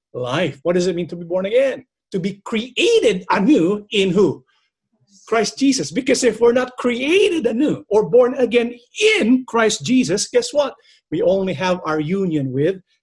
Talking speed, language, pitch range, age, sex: 170 wpm, English, 185-245 Hz, 50-69, male